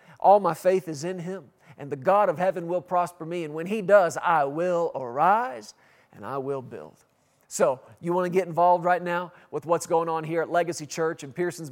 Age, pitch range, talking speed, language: 40-59, 155-185 Hz, 220 wpm, English